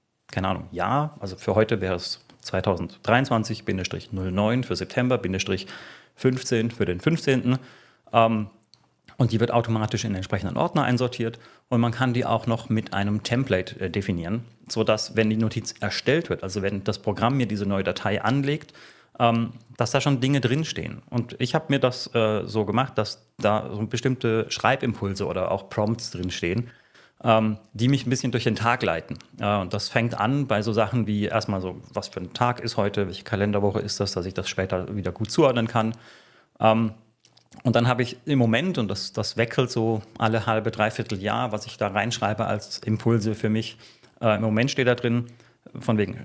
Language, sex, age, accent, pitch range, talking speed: German, male, 30-49, German, 105-125 Hz, 180 wpm